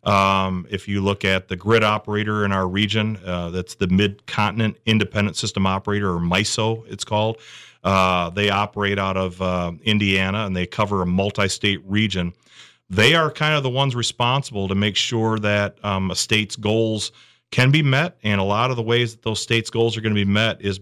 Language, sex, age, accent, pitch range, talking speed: English, male, 40-59, American, 95-115 Hz, 200 wpm